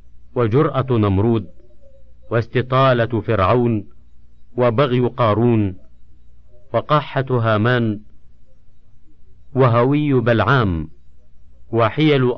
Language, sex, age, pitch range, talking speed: Arabic, male, 50-69, 95-125 Hz, 55 wpm